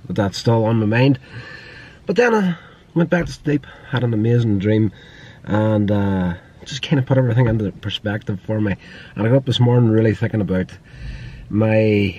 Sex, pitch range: male, 100-125 Hz